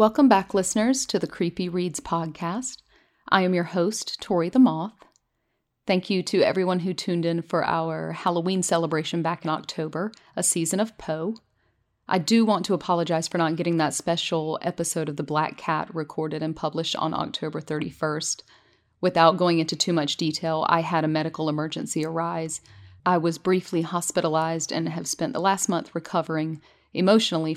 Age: 40-59